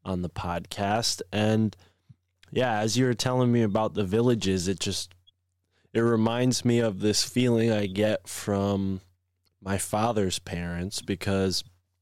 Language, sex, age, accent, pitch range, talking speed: English, male, 20-39, American, 95-115 Hz, 140 wpm